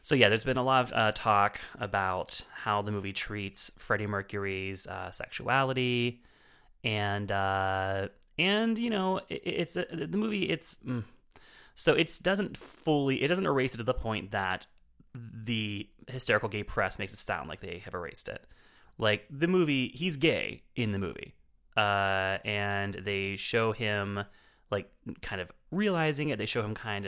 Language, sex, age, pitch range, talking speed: English, male, 30-49, 100-130 Hz, 170 wpm